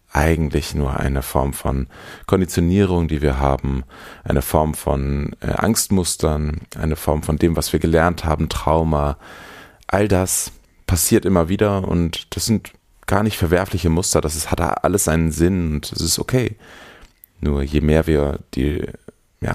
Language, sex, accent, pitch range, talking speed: German, male, German, 75-90 Hz, 150 wpm